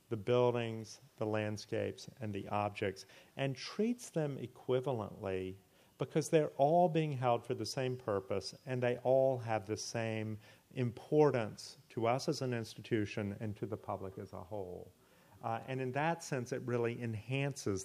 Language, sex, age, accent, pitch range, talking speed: English, male, 40-59, American, 105-130 Hz, 160 wpm